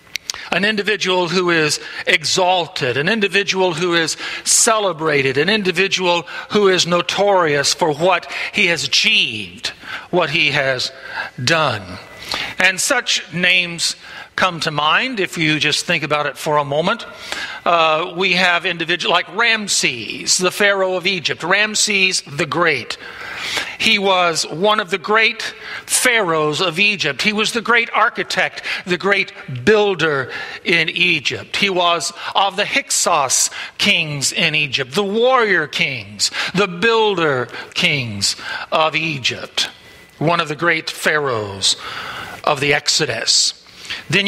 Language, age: English, 50-69